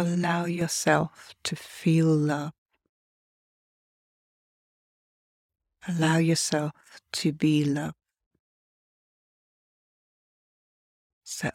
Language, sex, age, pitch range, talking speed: English, female, 40-59, 145-170 Hz, 55 wpm